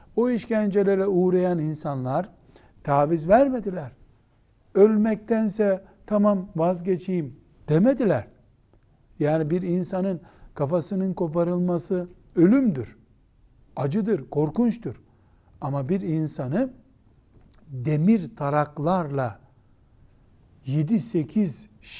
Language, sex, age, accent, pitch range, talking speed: Turkish, male, 60-79, native, 140-190 Hz, 65 wpm